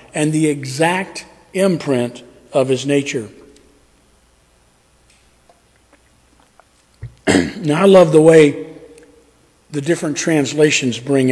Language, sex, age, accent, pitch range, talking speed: English, male, 50-69, American, 150-195 Hz, 85 wpm